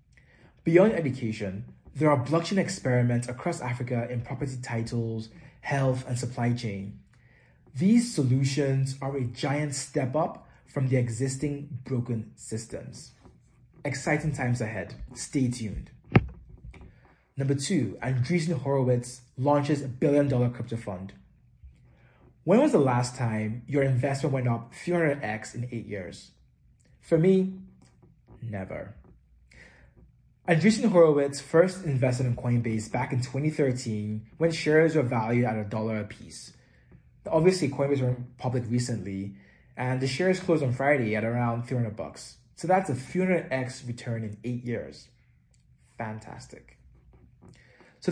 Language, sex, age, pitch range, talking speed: English, male, 20-39, 120-145 Hz, 125 wpm